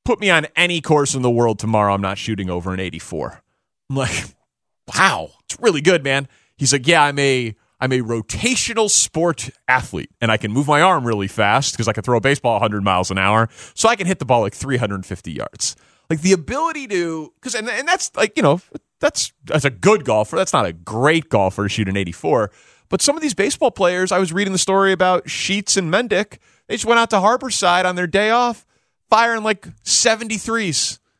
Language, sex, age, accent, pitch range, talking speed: English, male, 30-49, American, 120-185 Hz, 220 wpm